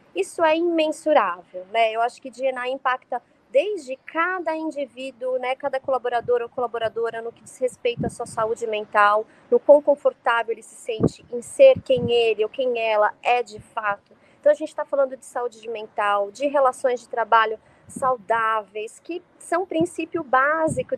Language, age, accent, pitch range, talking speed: Portuguese, 20-39, Brazilian, 230-300 Hz, 165 wpm